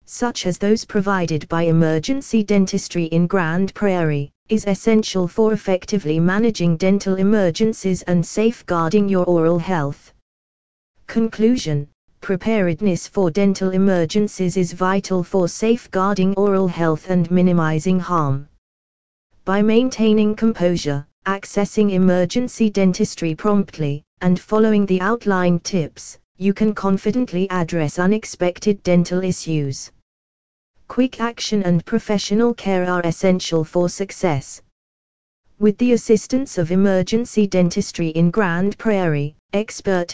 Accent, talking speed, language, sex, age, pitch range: British, 110 wpm, English, female, 20-39, 165-210 Hz